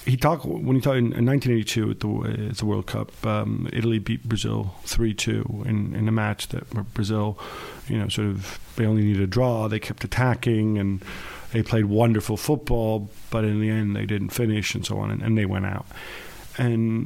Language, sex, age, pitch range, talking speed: English, male, 40-59, 100-115 Hz, 200 wpm